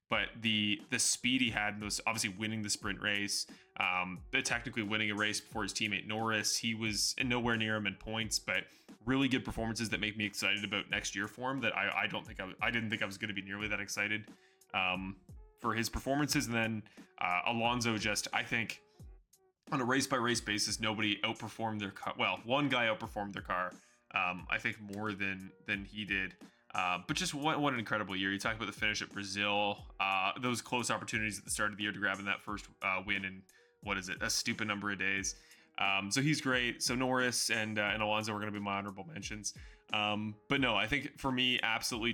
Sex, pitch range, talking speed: male, 100-115 Hz, 225 wpm